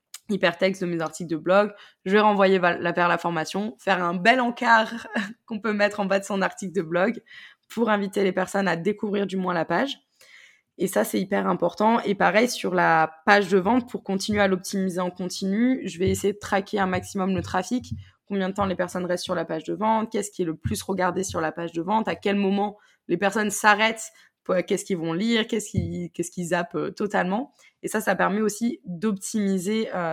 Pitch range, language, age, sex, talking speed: 175-205 Hz, French, 20-39, female, 215 wpm